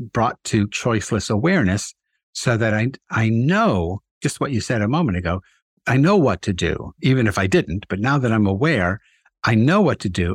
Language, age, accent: English, 60-79, American